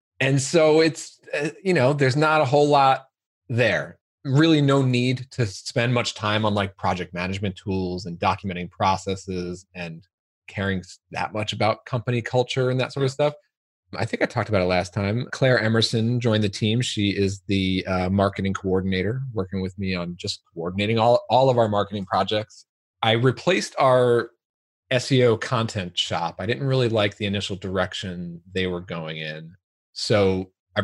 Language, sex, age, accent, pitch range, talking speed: English, male, 30-49, American, 95-125 Hz, 170 wpm